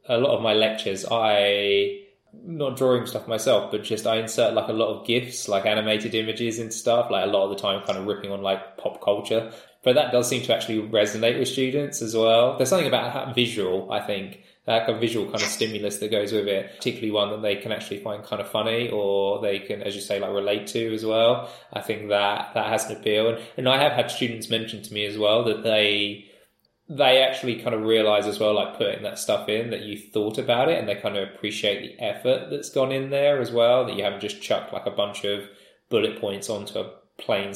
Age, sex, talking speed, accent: 20-39, male, 240 wpm, British